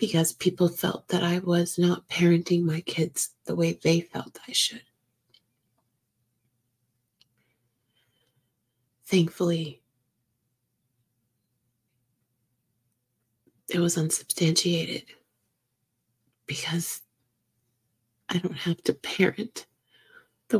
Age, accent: 30-49, American